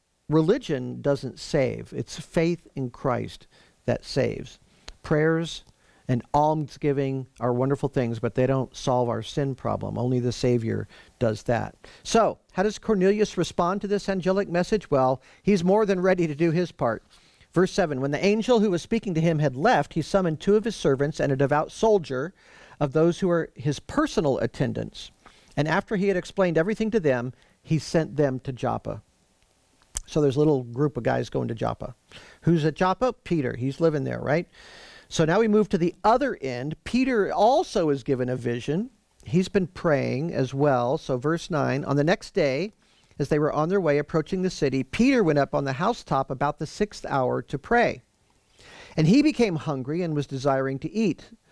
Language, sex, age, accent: English, male, 50-69, American